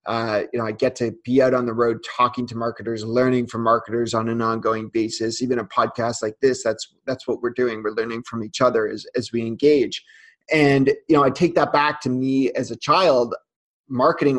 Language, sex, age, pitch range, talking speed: English, male, 30-49, 120-140 Hz, 220 wpm